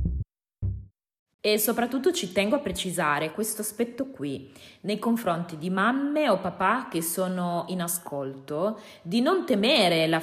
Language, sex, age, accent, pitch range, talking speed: Italian, female, 20-39, native, 155-210 Hz, 135 wpm